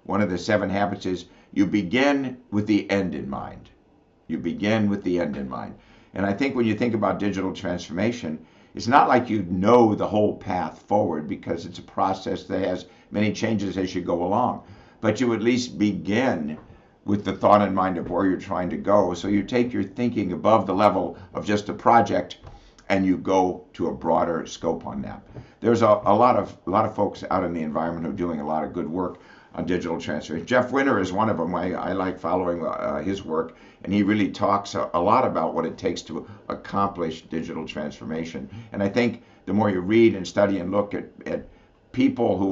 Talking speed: 215 wpm